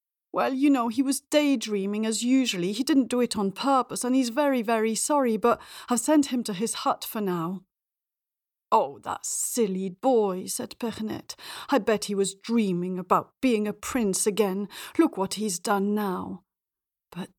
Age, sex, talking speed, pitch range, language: 40-59, female, 175 wpm, 185-245 Hz, English